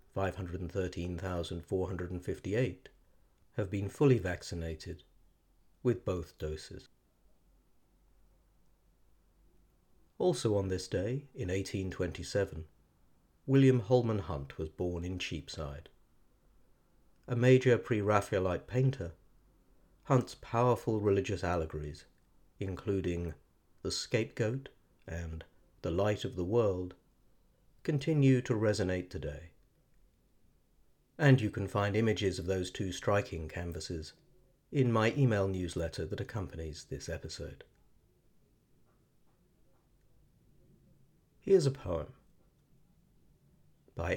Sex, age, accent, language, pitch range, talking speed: male, 50-69, British, English, 85-120 Hz, 85 wpm